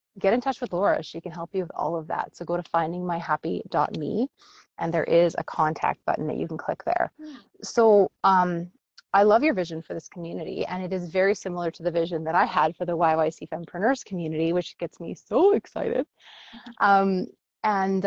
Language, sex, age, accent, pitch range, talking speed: English, female, 30-49, American, 165-200 Hz, 200 wpm